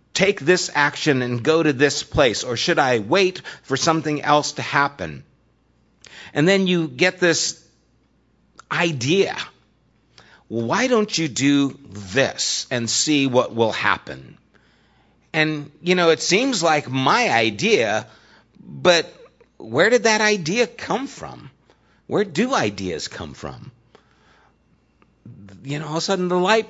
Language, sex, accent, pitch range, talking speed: English, male, American, 130-180 Hz, 135 wpm